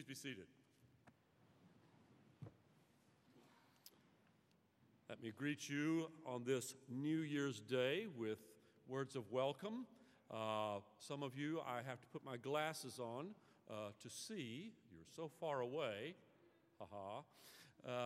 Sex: male